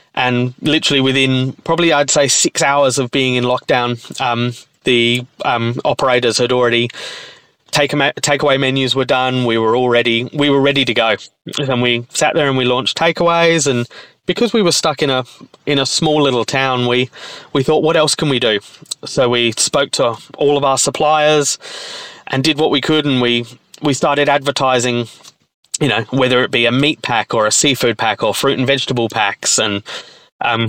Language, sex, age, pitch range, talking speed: English, male, 20-39, 125-160 Hz, 190 wpm